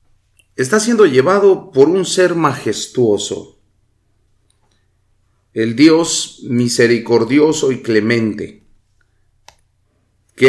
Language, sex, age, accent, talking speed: English, male, 40-59, Mexican, 75 wpm